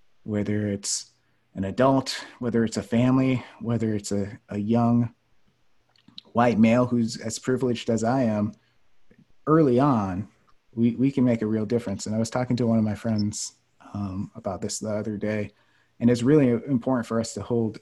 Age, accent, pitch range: 30-49, American, 105-120 Hz